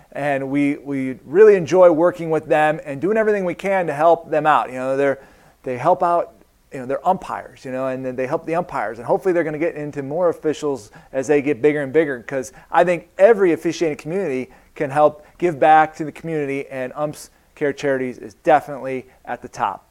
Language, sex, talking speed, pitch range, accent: English, male, 215 wpm, 145-200 Hz, American